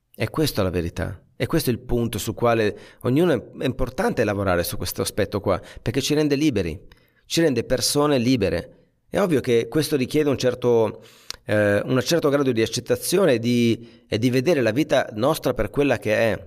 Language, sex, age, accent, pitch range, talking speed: Italian, male, 30-49, native, 100-130 Hz, 195 wpm